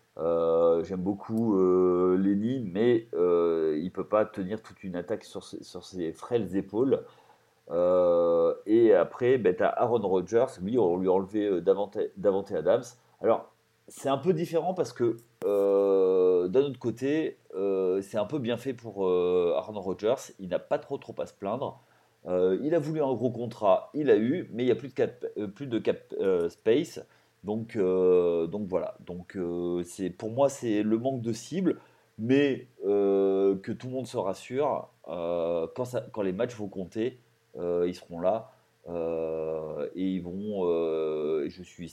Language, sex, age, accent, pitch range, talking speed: French, male, 30-49, French, 90-130 Hz, 185 wpm